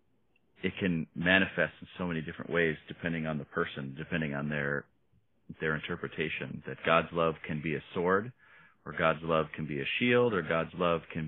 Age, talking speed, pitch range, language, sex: 40-59, 185 wpm, 80-95 Hz, English, male